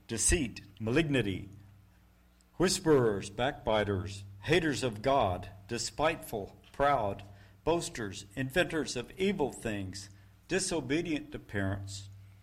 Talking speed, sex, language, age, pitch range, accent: 80 wpm, male, English, 60-79, 95-135 Hz, American